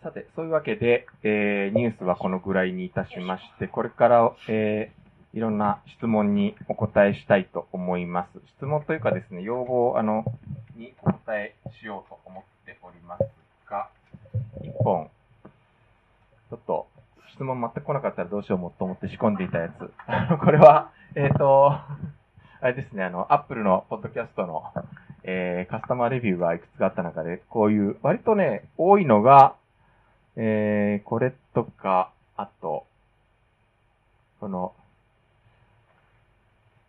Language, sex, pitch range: Japanese, male, 100-135 Hz